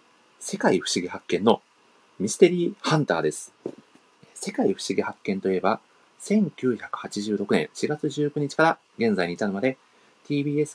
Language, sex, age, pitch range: Japanese, male, 40-59, 110-160 Hz